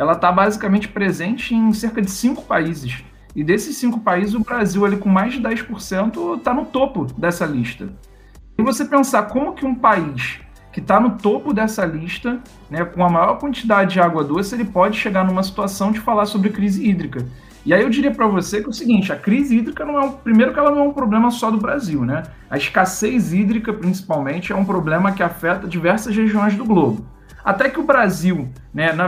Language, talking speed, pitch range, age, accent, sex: Portuguese, 210 wpm, 165-220 Hz, 40-59, Brazilian, male